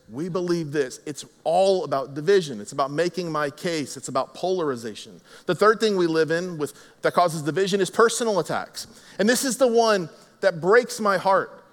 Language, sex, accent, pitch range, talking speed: English, male, American, 180-220 Hz, 190 wpm